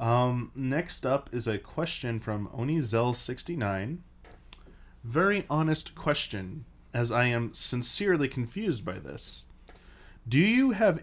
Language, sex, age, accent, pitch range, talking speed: English, male, 20-39, American, 110-150 Hz, 125 wpm